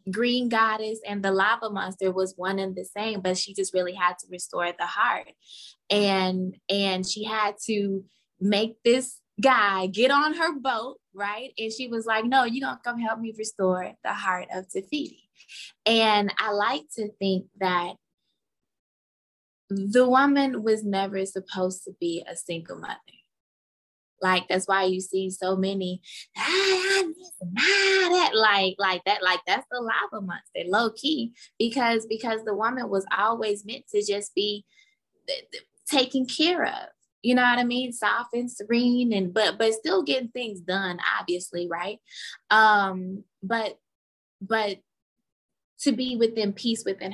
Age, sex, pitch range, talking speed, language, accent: 20-39, female, 190-245 Hz, 160 wpm, English, American